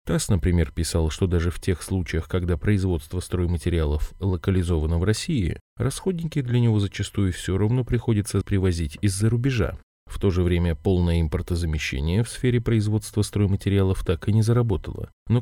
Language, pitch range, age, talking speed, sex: Russian, 90-115 Hz, 20-39, 150 wpm, male